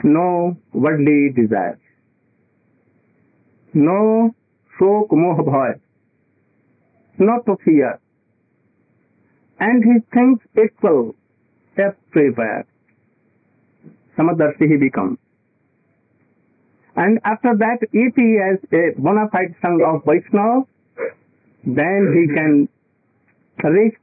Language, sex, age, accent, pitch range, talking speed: English, male, 50-69, Indian, 170-225 Hz, 85 wpm